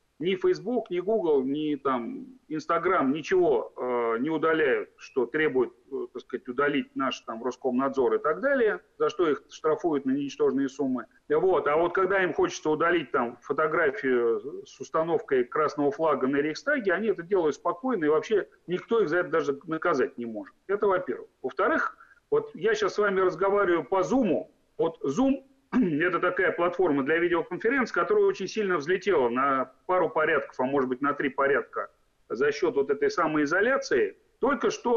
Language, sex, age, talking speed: Russian, male, 40-59, 155 wpm